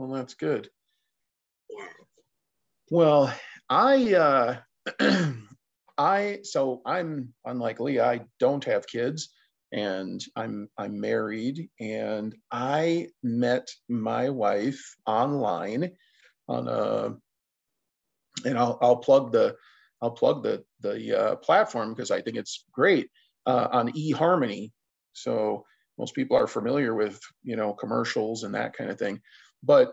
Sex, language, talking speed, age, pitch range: male, English, 120 wpm, 40-59, 115-165 Hz